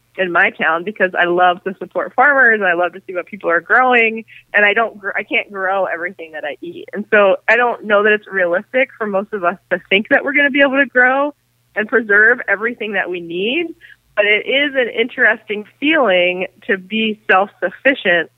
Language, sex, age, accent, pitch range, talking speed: English, female, 20-39, American, 175-225 Hz, 215 wpm